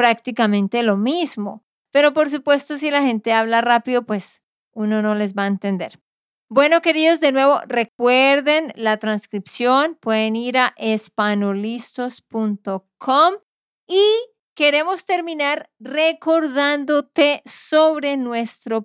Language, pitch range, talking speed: Spanish, 225-285 Hz, 110 wpm